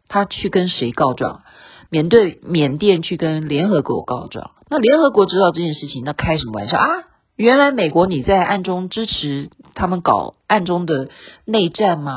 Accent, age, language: native, 40-59, Chinese